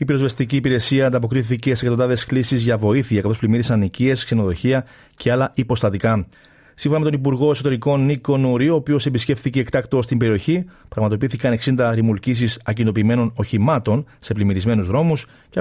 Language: Greek